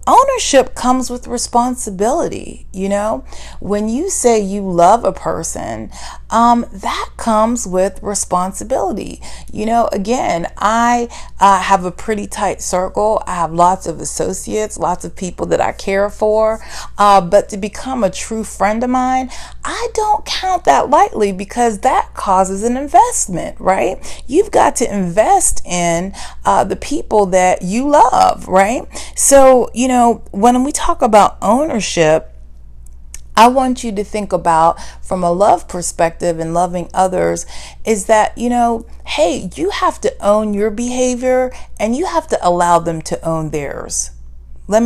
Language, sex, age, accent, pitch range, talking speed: English, female, 30-49, American, 175-245 Hz, 155 wpm